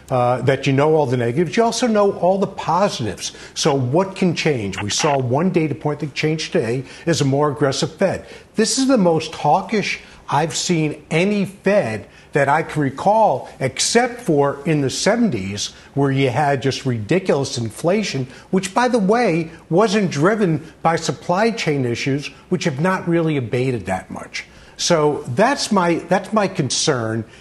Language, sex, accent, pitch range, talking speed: English, male, American, 135-195 Hz, 165 wpm